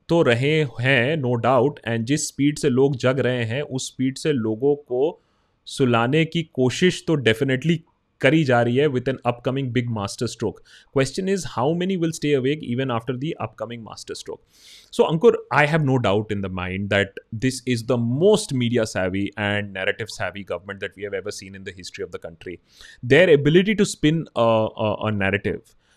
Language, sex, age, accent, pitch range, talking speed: Hindi, male, 30-49, native, 115-150 Hz, 180 wpm